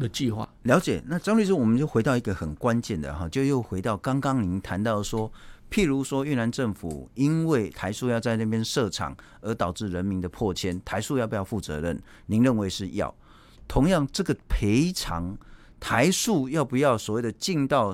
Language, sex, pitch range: Chinese, male, 95-135 Hz